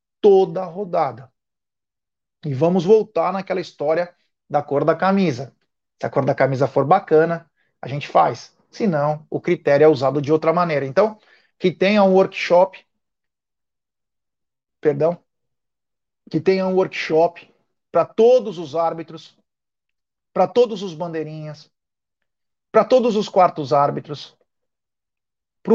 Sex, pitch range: male, 150-195 Hz